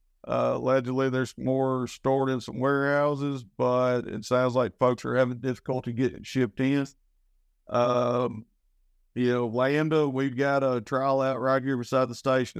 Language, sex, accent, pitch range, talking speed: English, male, American, 120-135 Hz, 155 wpm